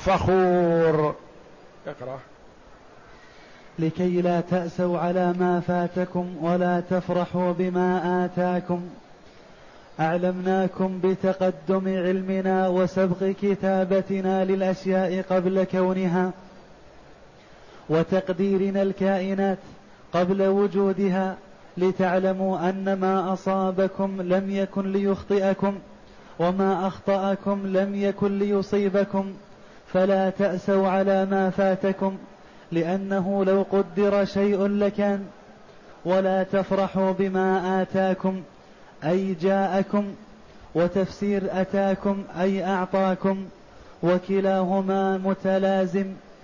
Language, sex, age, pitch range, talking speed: Arabic, male, 20-39, 185-195 Hz, 75 wpm